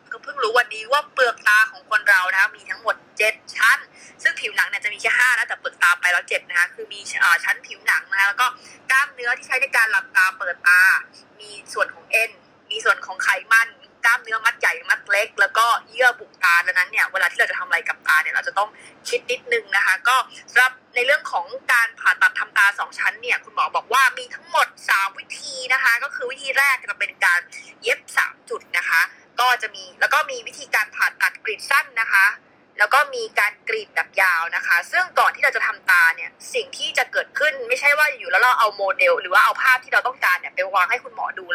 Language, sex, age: Thai, female, 20-39